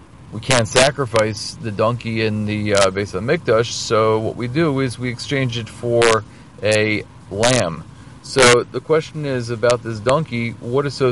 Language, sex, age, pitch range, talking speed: English, male, 40-59, 110-130 Hz, 175 wpm